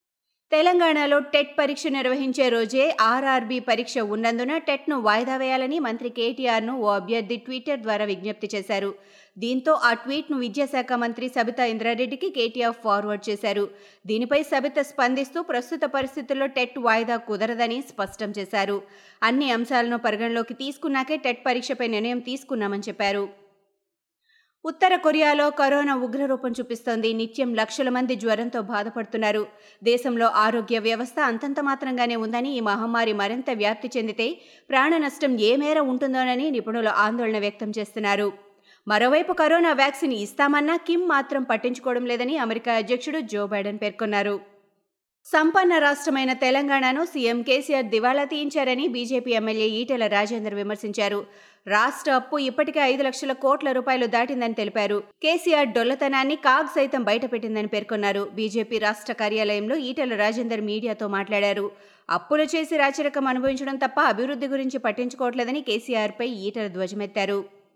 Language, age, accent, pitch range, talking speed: Telugu, 20-39, native, 215-275 Hz, 120 wpm